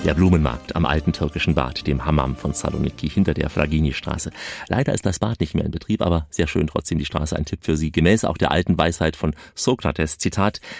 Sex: male